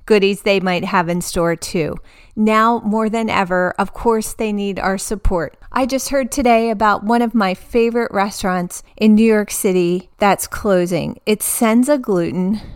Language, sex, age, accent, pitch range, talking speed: English, female, 30-49, American, 200-250 Hz, 170 wpm